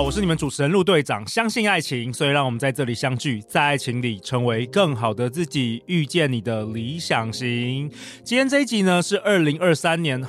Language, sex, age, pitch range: Chinese, male, 30-49, 120-165 Hz